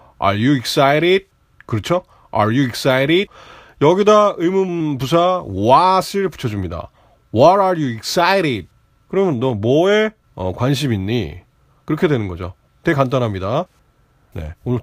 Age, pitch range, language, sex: 30-49, 110-175 Hz, Korean, male